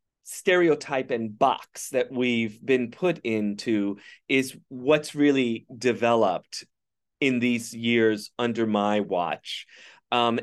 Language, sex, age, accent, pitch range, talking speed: English, male, 30-49, American, 115-150 Hz, 110 wpm